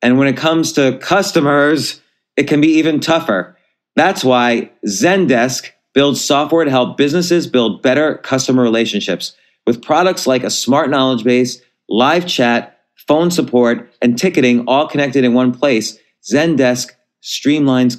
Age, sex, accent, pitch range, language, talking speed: 30-49, male, American, 120-150 Hz, English, 145 wpm